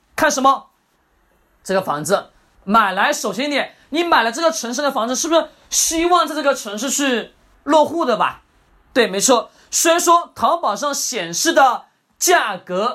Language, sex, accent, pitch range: Chinese, male, native, 220-310 Hz